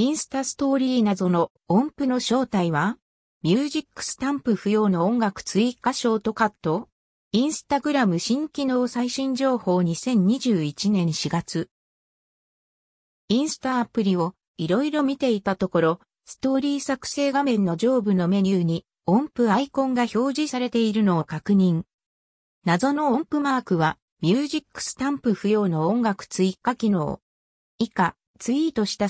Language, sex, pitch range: Japanese, female, 180-270 Hz